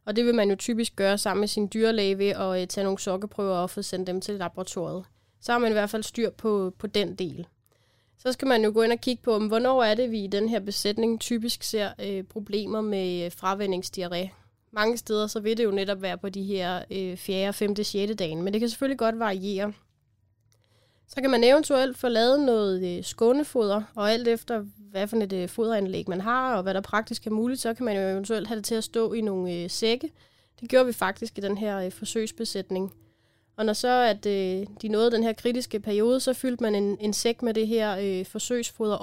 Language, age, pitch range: Danish, 20-39, 195-225 Hz